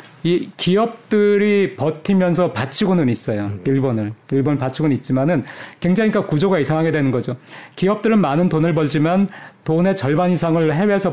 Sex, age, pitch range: male, 40-59, 135-185 Hz